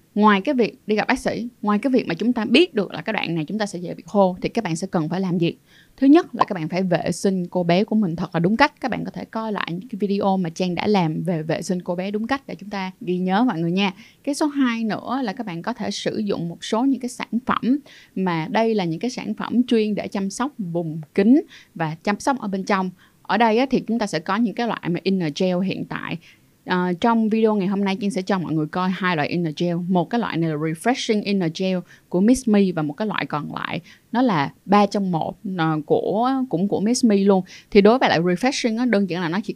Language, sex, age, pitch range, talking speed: Vietnamese, female, 20-39, 175-235 Hz, 275 wpm